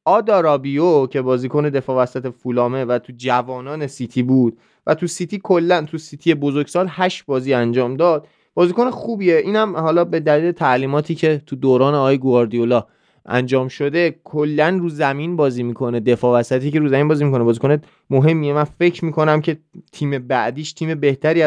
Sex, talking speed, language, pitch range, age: male, 160 wpm, Persian, 130-165 Hz, 20-39